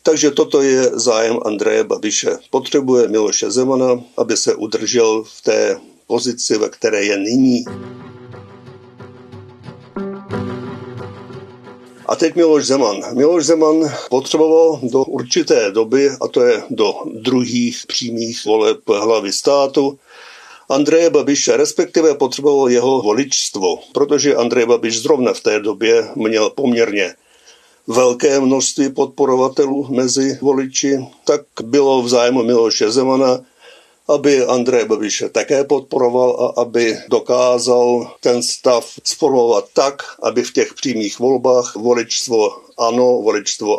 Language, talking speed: Czech, 115 wpm